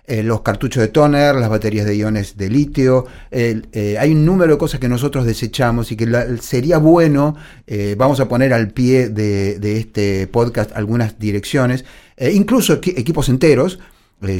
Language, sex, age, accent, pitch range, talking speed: Spanish, male, 40-59, Argentinian, 115-160 Hz, 175 wpm